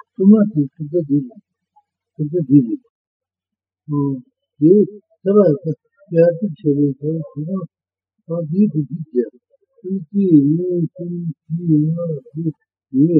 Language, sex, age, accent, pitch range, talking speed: Italian, male, 50-69, Indian, 145-205 Hz, 50 wpm